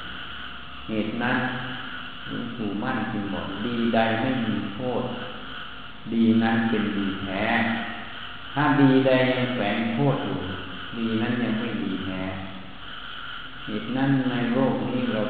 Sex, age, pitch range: male, 60-79, 95-130 Hz